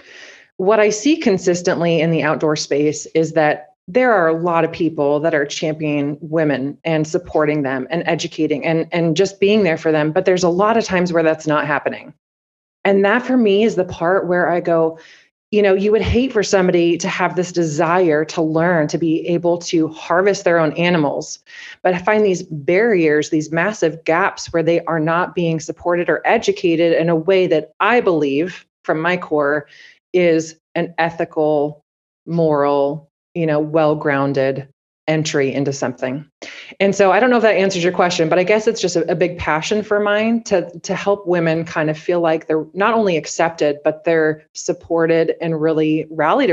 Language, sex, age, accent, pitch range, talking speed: English, female, 30-49, American, 155-185 Hz, 190 wpm